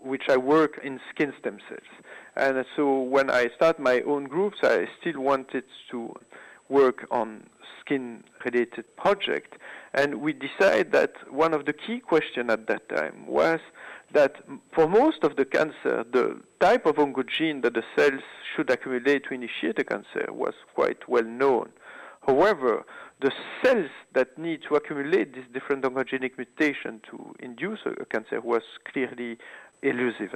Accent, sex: French, male